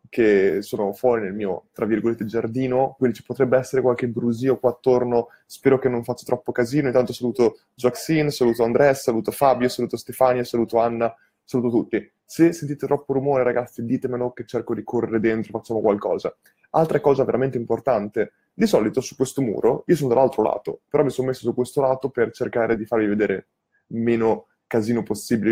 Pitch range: 115-140 Hz